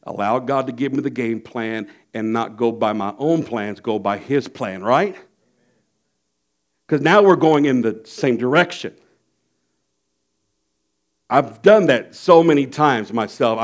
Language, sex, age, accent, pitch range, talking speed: English, male, 60-79, American, 125-180 Hz, 155 wpm